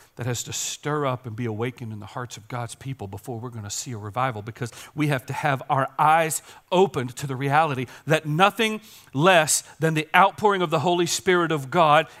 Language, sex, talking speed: English, male, 215 wpm